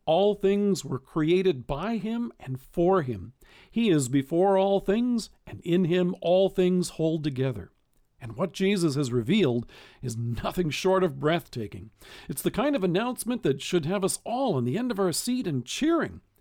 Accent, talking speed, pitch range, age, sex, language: American, 180 wpm, 135-195 Hz, 50-69, male, English